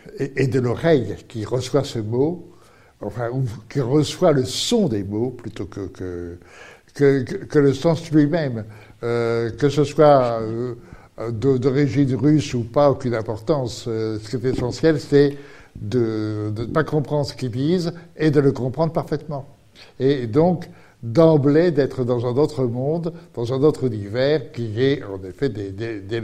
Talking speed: 160 wpm